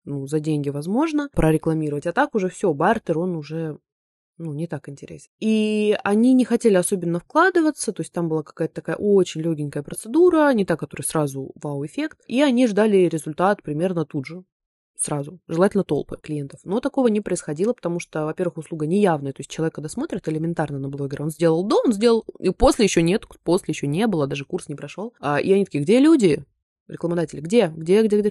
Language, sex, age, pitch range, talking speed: Russian, female, 20-39, 155-210 Hz, 195 wpm